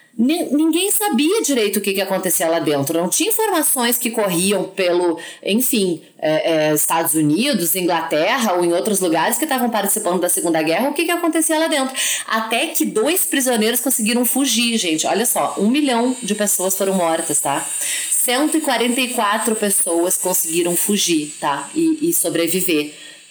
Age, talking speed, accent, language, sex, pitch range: 30-49, 150 wpm, Brazilian, Portuguese, female, 170-245 Hz